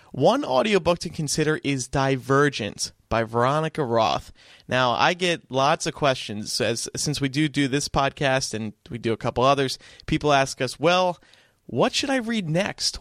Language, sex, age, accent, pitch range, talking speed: English, male, 30-49, American, 115-160 Hz, 170 wpm